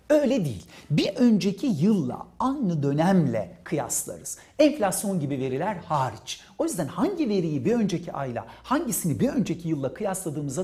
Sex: male